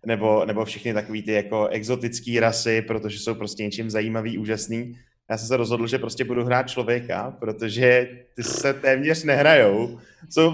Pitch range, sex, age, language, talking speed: 120-155 Hz, male, 20-39, Czech, 165 wpm